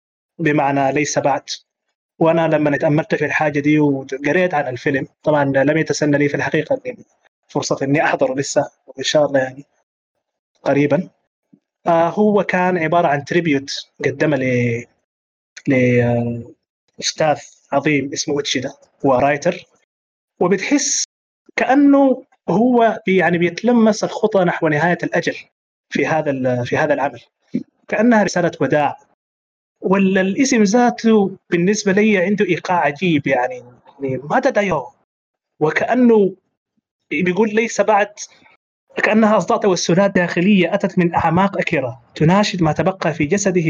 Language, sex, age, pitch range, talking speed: Arabic, male, 30-49, 145-195 Hz, 115 wpm